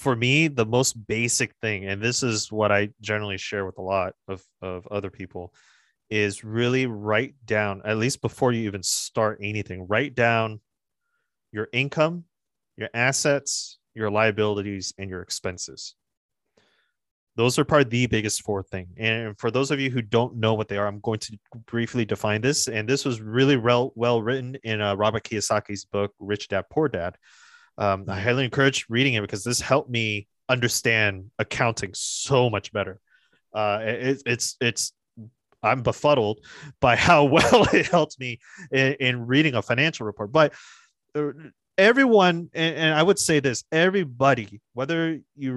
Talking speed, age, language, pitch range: 165 wpm, 20-39, English, 105-135 Hz